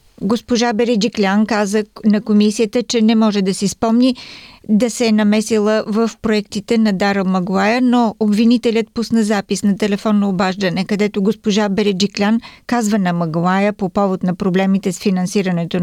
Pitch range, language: 200-230 Hz, Bulgarian